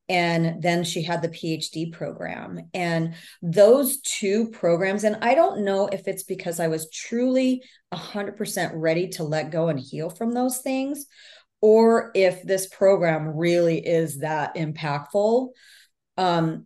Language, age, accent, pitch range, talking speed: English, 40-59, American, 160-195 Hz, 150 wpm